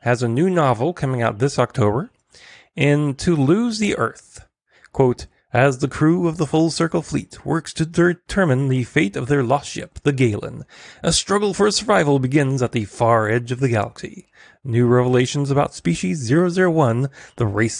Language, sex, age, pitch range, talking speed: English, male, 30-49, 120-160 Hz, 170 wpm